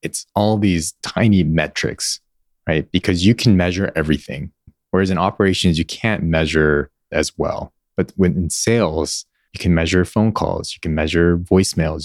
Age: 20-39